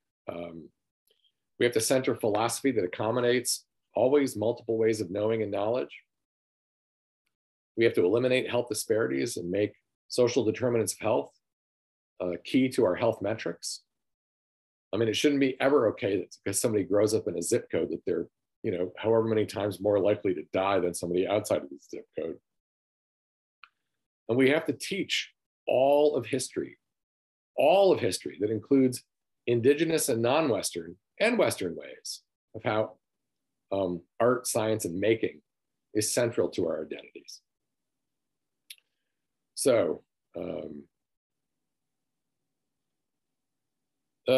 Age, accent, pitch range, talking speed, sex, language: 40-59, American, 90-125 Hz, 135 wpm, male, English